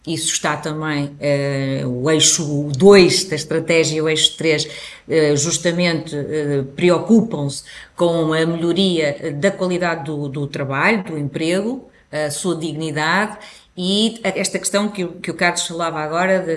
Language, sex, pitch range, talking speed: Portuguese, female, 155-185 Hz, 140 wpm